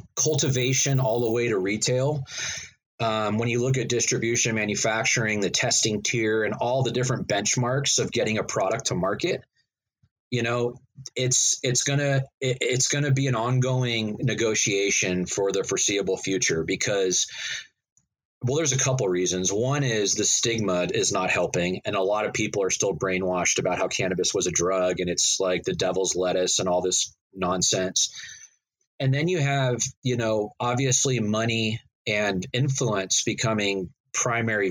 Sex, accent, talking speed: male, American, 160 wpm